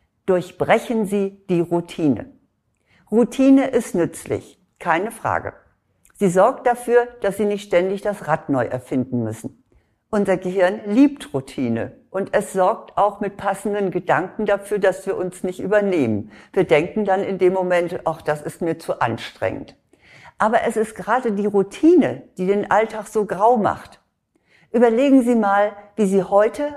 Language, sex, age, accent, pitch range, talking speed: German, female, 60-79, German, 175-230 Hz, 150 wpm